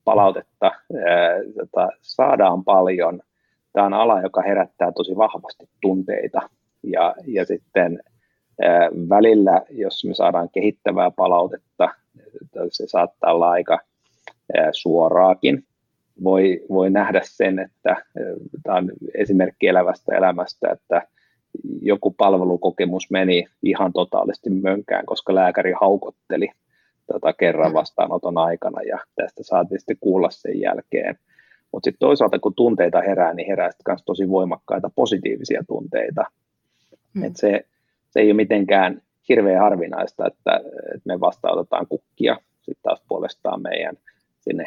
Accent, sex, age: native, male, 30-49